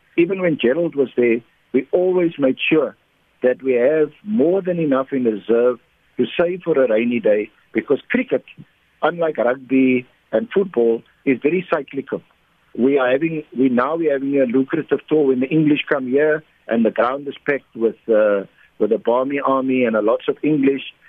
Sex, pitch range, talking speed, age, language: male, 120-145 Hz, 180 wpm, 50-69, English